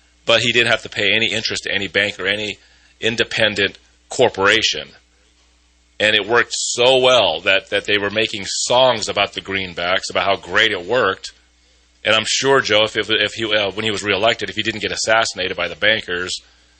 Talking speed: 195 wpm